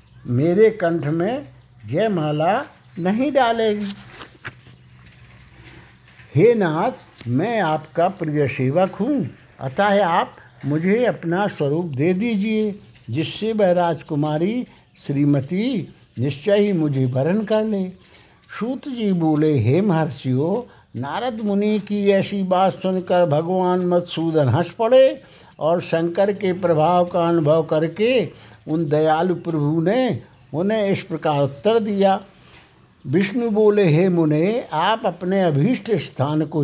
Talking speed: 115 wpm